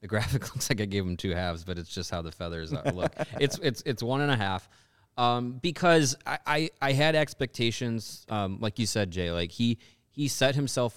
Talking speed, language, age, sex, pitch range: 225 wpm, English, 20-39, male, 95-120 Hz